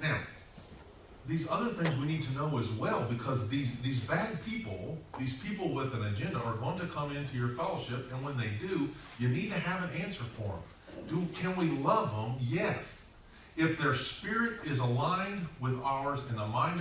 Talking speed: 195 wpm